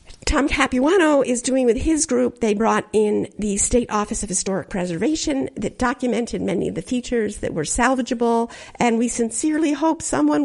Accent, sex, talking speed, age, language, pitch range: American, female, 170 wpm, 50-69, English, 235-295 Hz